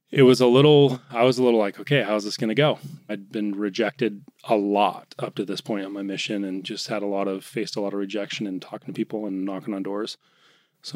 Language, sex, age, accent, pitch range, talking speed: English, male, 30-49, American, 100-130 Hz, 260 wpm